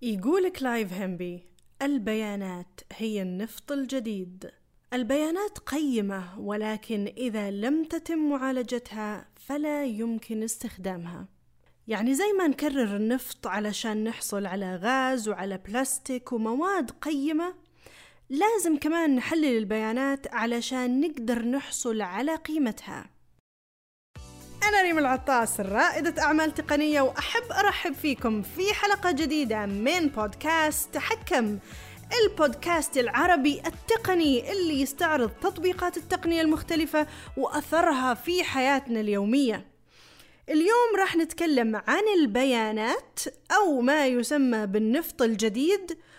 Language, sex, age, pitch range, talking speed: Arabic, female, 20-39, 225-325 Hz, 100 wpm